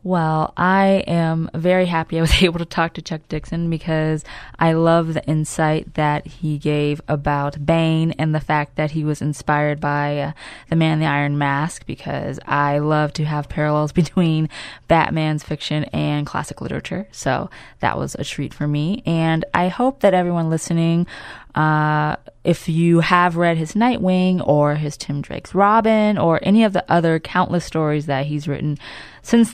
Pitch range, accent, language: 150-185 Hz, American, English